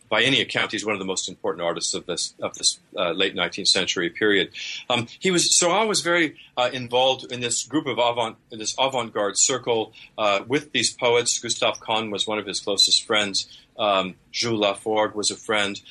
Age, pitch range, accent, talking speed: 40-59, 100-125 Hz, American, 210 wpm